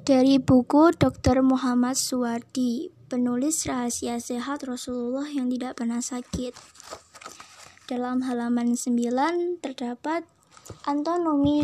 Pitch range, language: 245-295 Hz, Indonesian